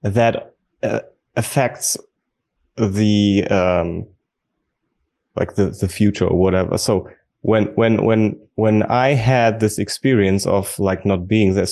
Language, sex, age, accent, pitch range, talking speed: English, male, 20-39, German, 95-120 Hz, 130 wpm